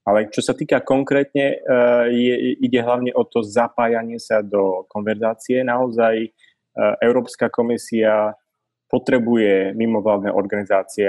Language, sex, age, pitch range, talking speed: Czech, male, 20-39, 105-120 Hz, 110 wpm